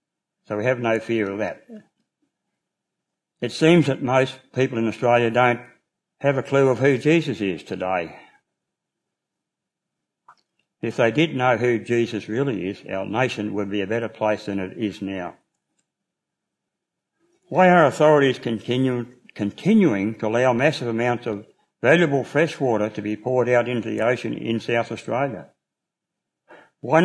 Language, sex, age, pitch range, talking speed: English, male, 60-79, 105-135 Hz, 145 wpm